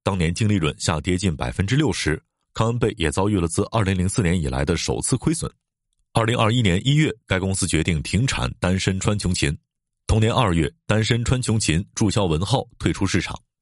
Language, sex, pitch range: Chinese, male, 90-125 Hz